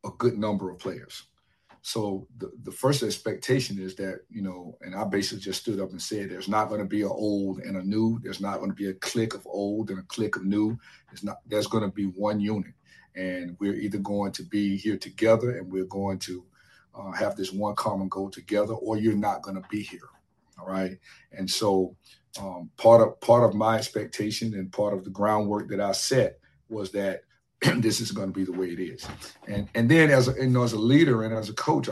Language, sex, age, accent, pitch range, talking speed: English, male, 50-69, American, 100-120 Hz, 230 wpm